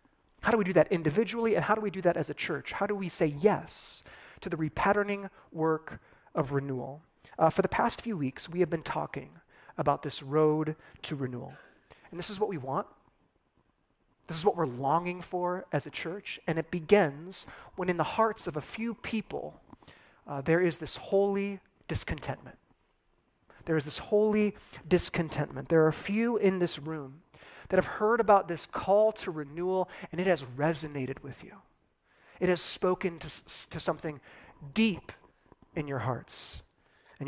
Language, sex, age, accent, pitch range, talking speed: English, male, 30-49, American, 145-185 Hz, 175 wpm